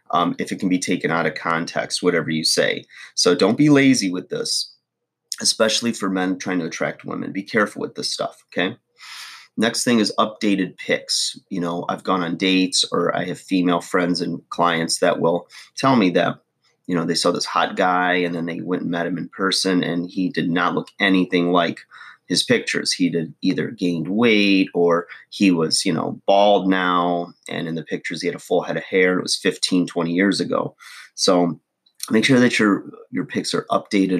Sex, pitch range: male, 85-95 Hz